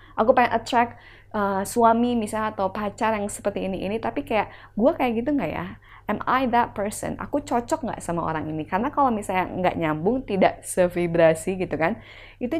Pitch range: 175-235 Hz